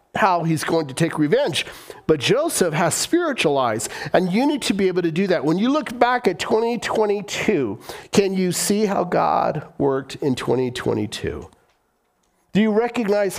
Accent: American